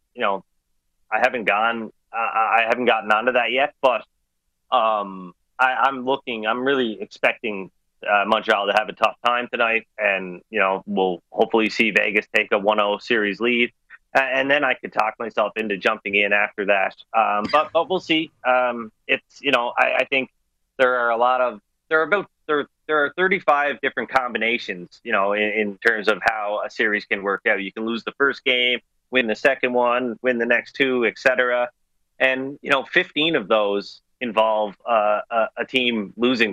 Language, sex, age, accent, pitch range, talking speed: English, male, 30-49, American, 105-125 Hz, 190 wpm